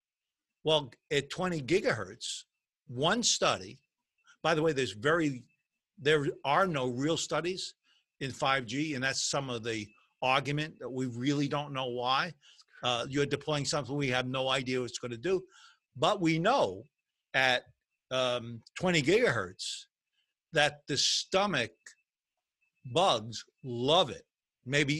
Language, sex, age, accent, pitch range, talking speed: English, male, 50-69, American, 125-155 Hz, 135 wpm